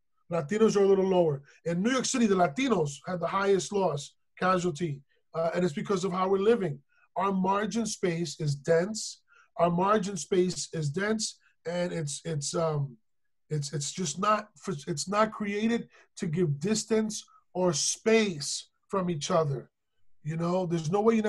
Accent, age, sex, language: American, 20-39, male, English